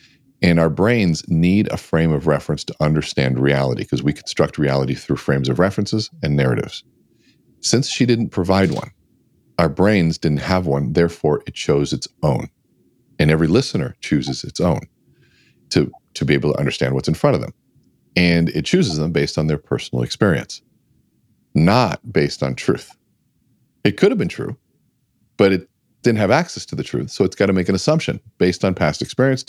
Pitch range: 75-100 Hz